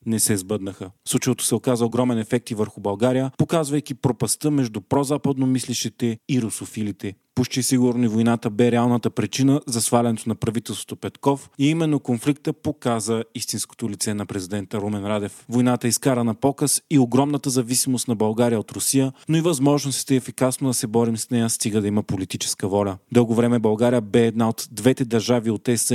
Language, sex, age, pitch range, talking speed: Bulgarian, male, 30-49, 110-130 Hz, 170 wpm